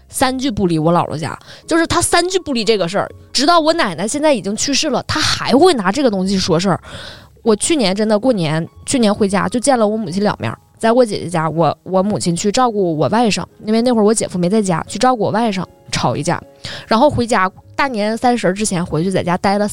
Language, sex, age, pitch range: Chinese, female, 20-39, 185-245 Hz